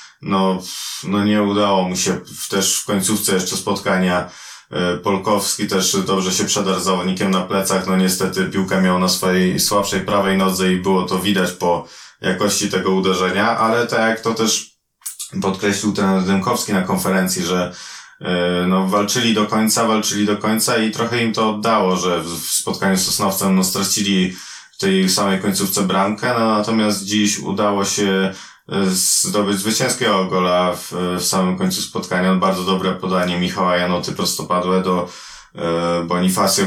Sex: male